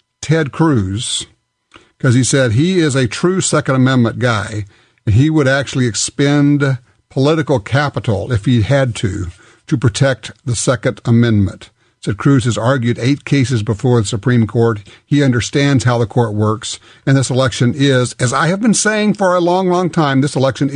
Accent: American